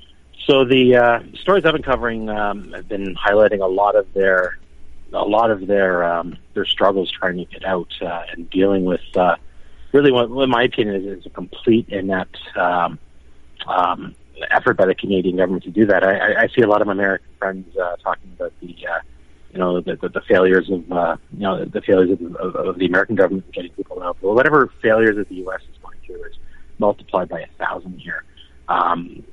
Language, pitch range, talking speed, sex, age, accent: English, 90-105 Hz, 215 wpm, male, 30-49, American